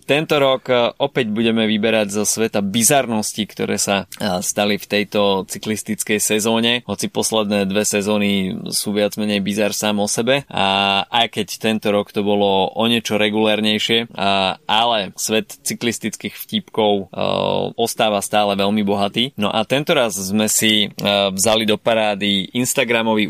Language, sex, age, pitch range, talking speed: Slovak, male, 20-39, 100-115 Hz, 135 wpm